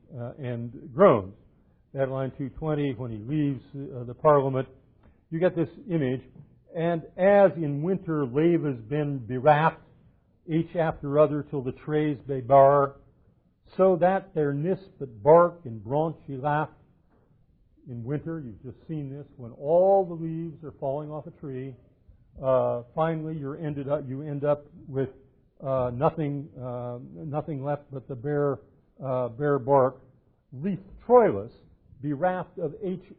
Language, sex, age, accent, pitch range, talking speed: English, male, 50-69, American, 125-160 Hz, 145 wpm